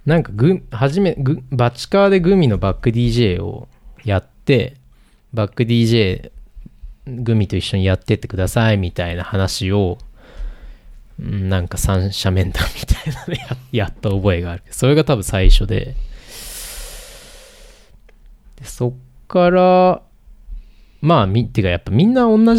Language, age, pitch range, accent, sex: Japanese, 20-39, 95-130 Hz, native, male